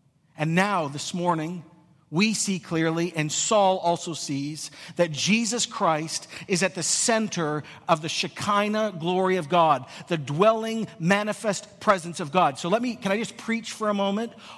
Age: 50-69